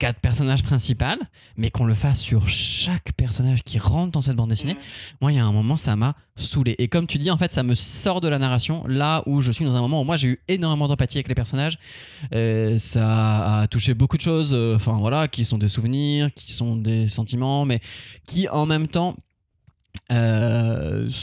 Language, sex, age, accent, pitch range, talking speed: French, male, 20-39, French, 110-135 Hz, 215 wpm